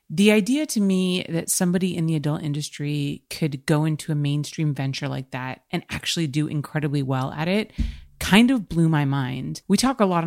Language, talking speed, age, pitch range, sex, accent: English, 200 wpm, 30-49, 145-180 Hz, female, American